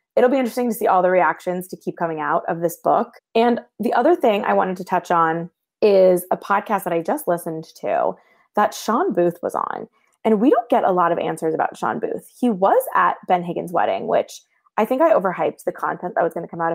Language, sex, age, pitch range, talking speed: English, female, 20-39, 170-210 Hz, 240 wpm